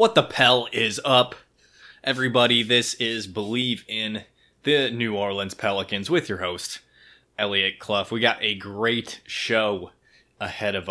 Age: 20-39